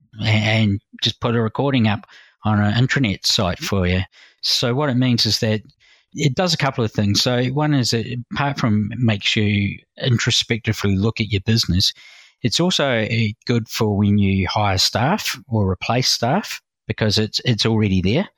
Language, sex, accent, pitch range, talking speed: English, male, Australian, 100-115 Hz, 175 wpm